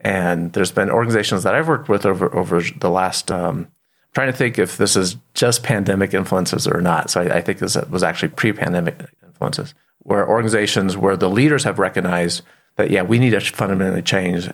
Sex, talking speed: male, 195 wpm